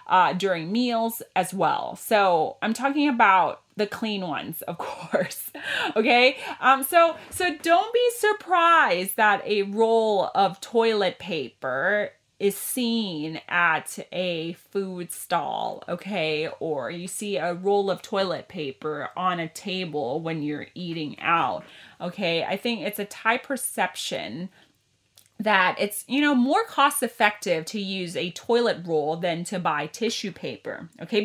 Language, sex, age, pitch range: Thai, female, 30-49, 175-235 Hz